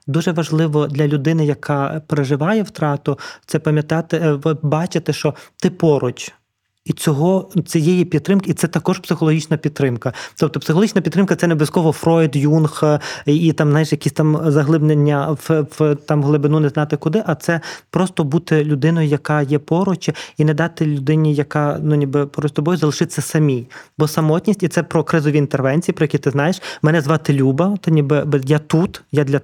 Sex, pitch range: male, 145-160 Hz